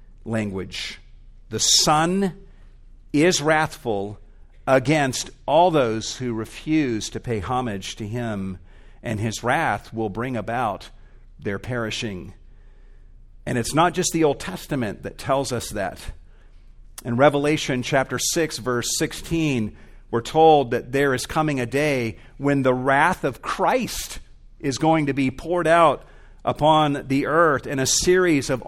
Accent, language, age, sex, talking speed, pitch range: American, English, 50-69, male, 140 wpm, 120-165 Hz